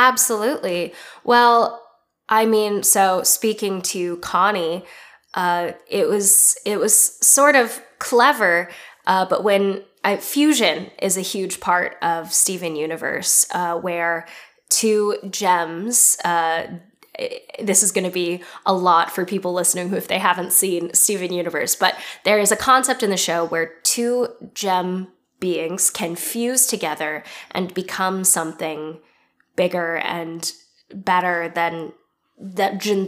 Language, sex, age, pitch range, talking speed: English, female, 10-29, 175-205 Hz, 130 wpm